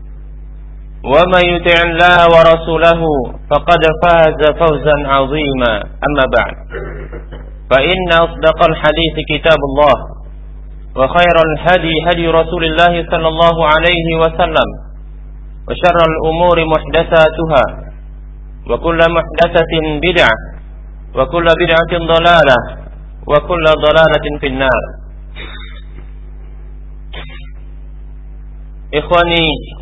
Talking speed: 75 wpm